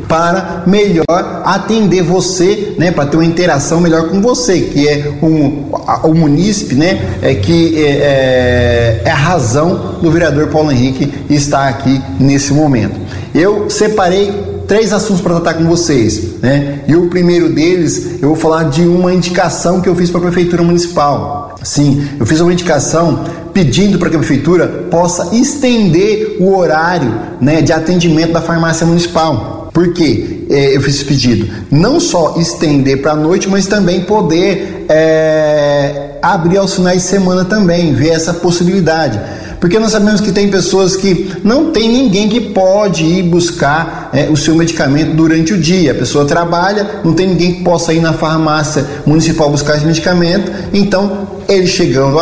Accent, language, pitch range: Brazilian, Portuguese, 150-185 Hz